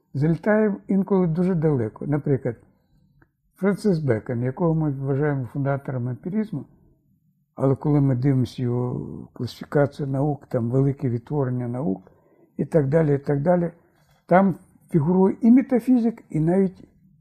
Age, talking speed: 60-79, 120 wpm